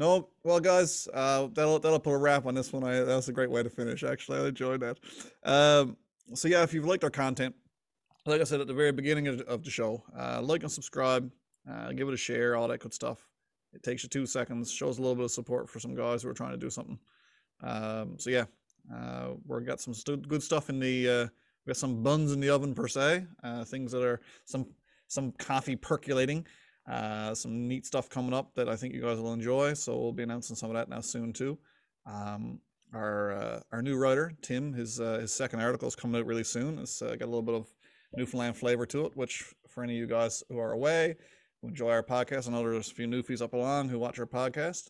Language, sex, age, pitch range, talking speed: English, male, 20-39, 115-135 Hz, 240 wpm